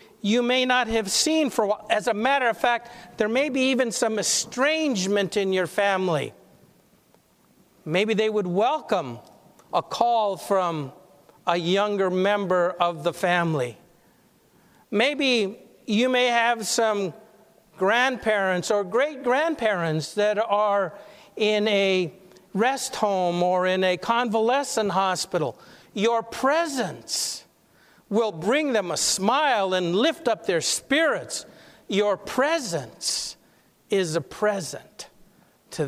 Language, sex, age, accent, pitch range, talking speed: English, male, 50-69, American, 180-230 Hz, 120 wpm